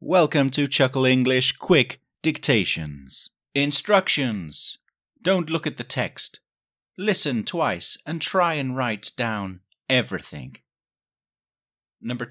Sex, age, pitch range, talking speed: male, 30-49, 105-140 Hz, 100 wpm